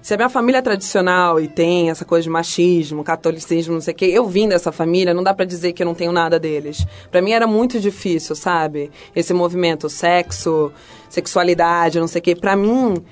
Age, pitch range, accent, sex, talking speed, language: 20-39, 165-205 Hz, Brazilian, female, 215 wpm, Portuguese